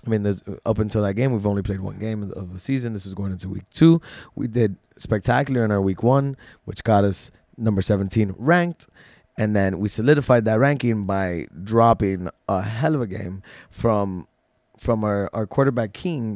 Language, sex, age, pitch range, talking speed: English, male, 20-39, 100-125 Hz, 195 wpm